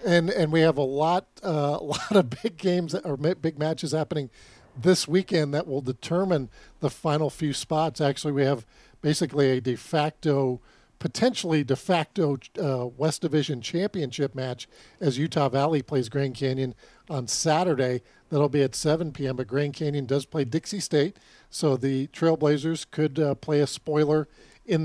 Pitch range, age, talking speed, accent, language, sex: 135-160 Hz, 50-69, 165 wpm, American, English, male